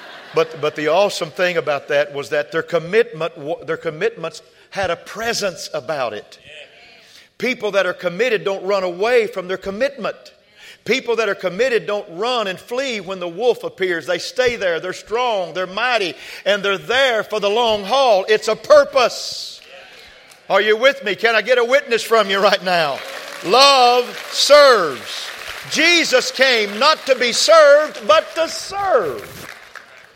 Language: English